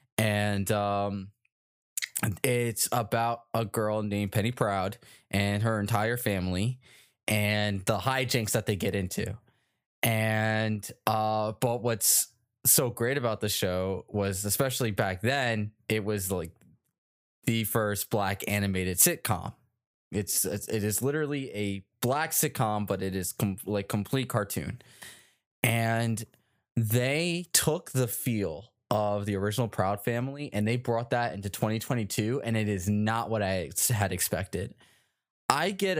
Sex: male